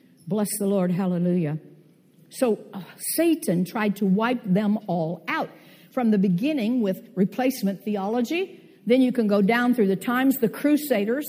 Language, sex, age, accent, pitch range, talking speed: English, female, 60-79, American, 180-255 Hz, 155 wpm